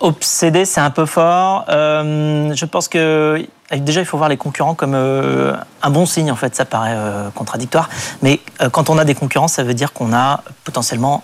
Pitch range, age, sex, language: 130-160 Hz, 30-49, male, French